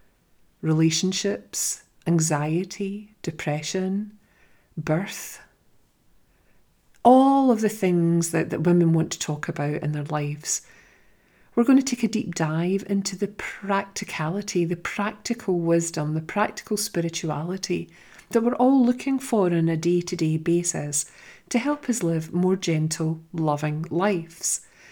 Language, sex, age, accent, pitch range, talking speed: English, female, 40-59, British, 155-205 Hz, 125 wpm